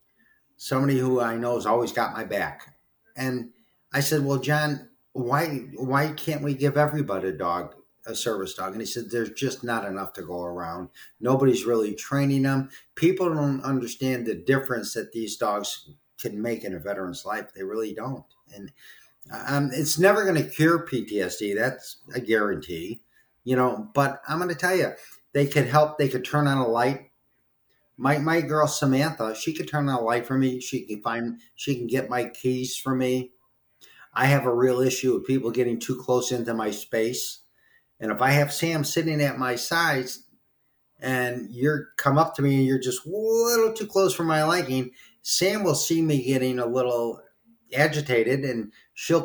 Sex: male